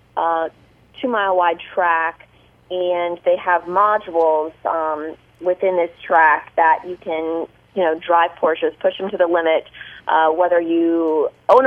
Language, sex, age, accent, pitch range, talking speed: English, female, 20-39, American, 170-195 Hz, 145 wpm